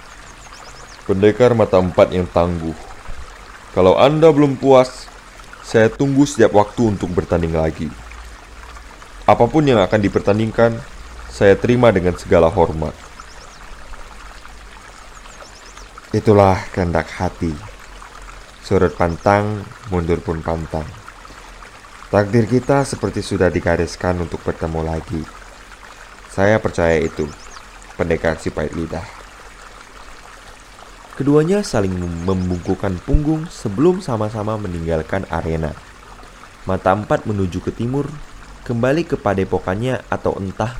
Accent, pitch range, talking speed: native, 85-120 Hz, 95 wpm